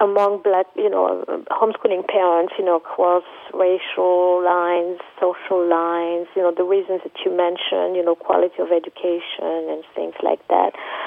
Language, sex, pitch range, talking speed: English, female, 170-210 Hz, 155 wpm